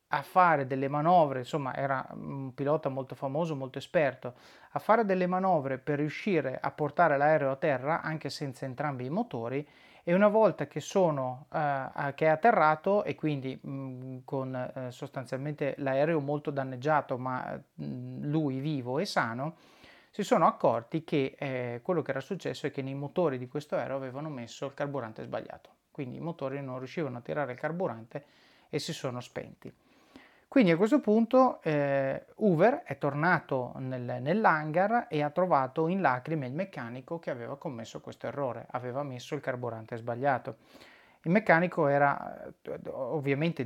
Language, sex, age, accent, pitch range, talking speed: Italian, male, 30-49, native, 135-170 Hz, 155 wpm